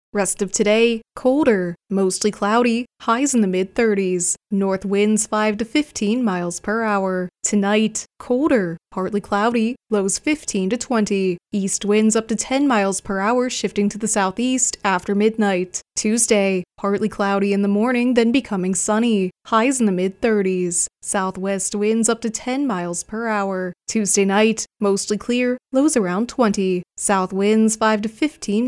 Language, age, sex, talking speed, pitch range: English, 20-39, female, 155 wpm, 195-235 Hz